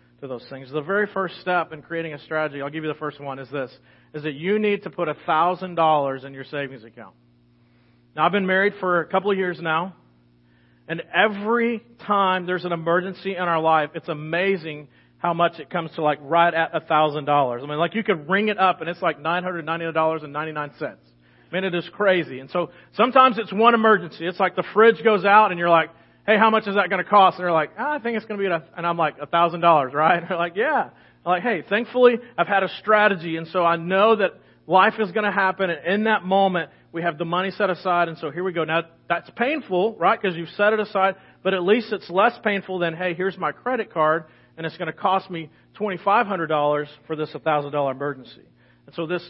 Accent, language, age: American, English, 40-59